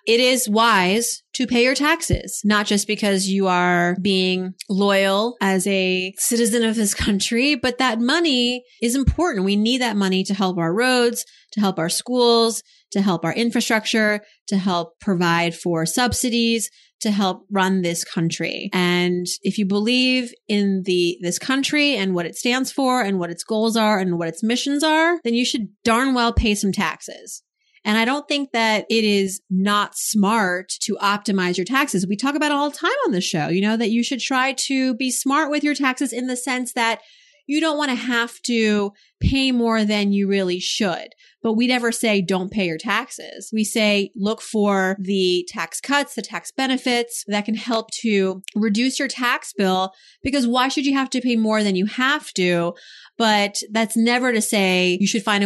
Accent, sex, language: American, female, English